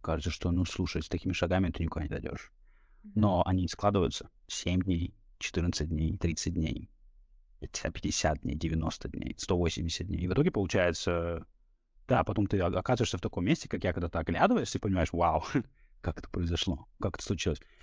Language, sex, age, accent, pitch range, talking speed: Russian, male, 30-49, native, 85-100 Hz, 170 wpm